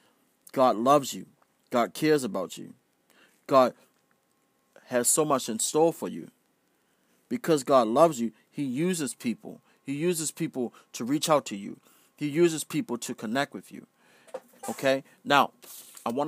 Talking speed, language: 150 wpm, English